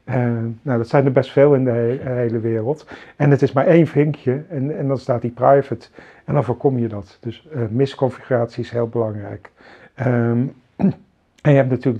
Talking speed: 190 wpm